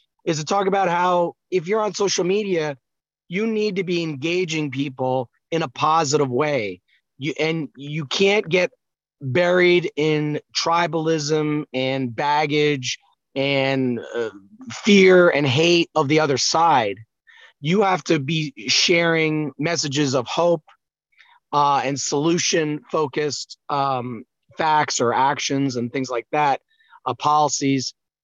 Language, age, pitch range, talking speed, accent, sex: English, 30-49, 140-170 Hz, 125 wpm, American, male